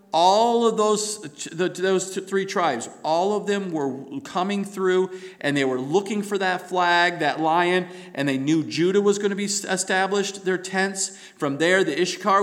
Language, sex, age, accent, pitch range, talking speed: English, male, 40-59, American, 165-205 Hz, 175 wpm